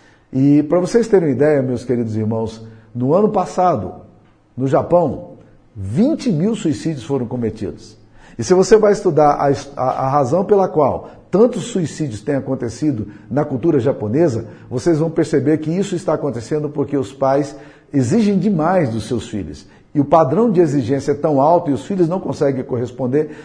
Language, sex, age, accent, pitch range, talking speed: Portuguese, male, 50-69, Brazilian, 125-165 Hz, 170 wpm